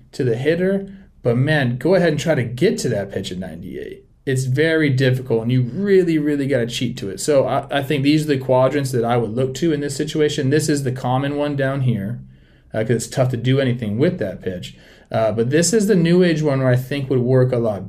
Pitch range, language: 105-140 Hz, English